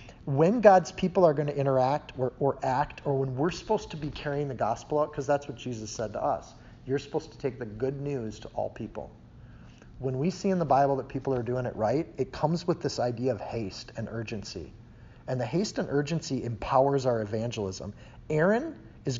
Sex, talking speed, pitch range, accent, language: male, 215 wpm, 120-155 Hz, American, English